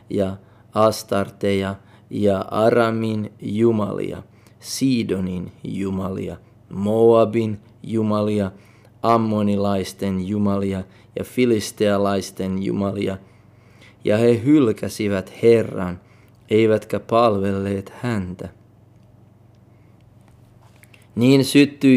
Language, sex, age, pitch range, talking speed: Finnish, male, 30-49, 105-115 Hz, 60 wpm